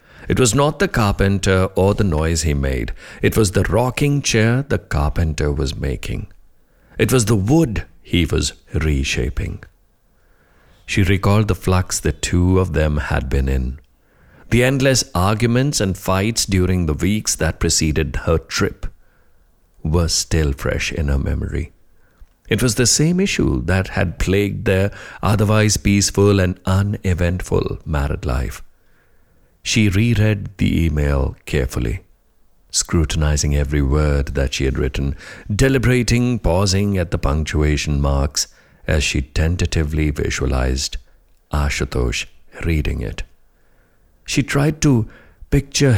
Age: 50-69